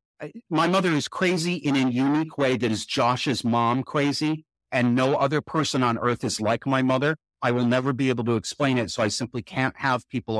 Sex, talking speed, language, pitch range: male, 215 wpm, English, 105-135 Hz